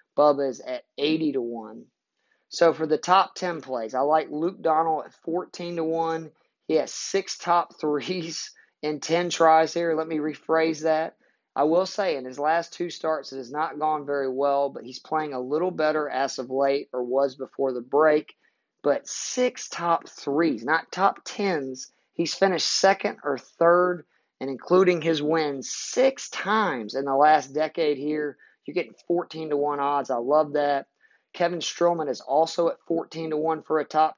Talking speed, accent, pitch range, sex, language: 185 wpm, American, 145-165 Hz, male, English